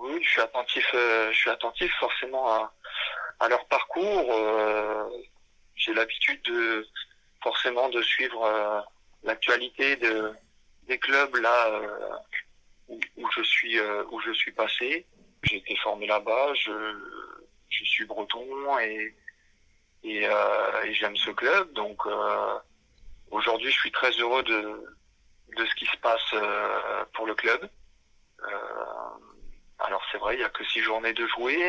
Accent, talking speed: French, 150 wpm